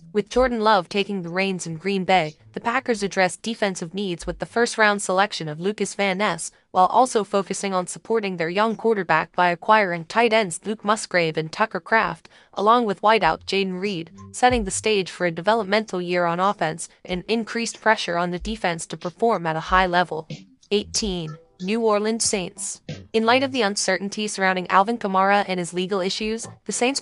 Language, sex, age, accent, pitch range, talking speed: English, female, 10-29, American, 175-215 Hz, 185 wpm